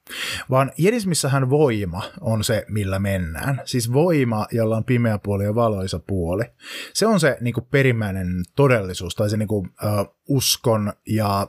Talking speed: 150 wpm